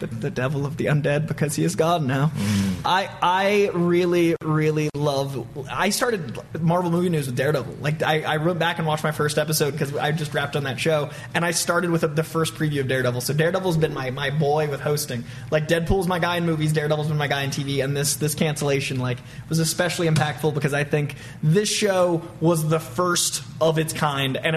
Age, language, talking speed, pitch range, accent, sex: 20-39, English, 215 wpm, 135-160 Hz, American, male